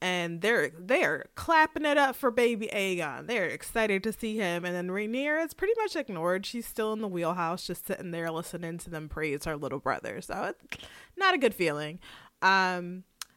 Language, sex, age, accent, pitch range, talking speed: English, female, 20-39, American, 180-245 Hz, 195 wpm